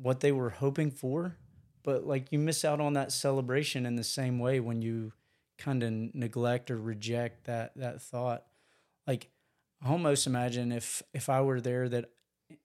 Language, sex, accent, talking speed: English, male, American, 170 wpm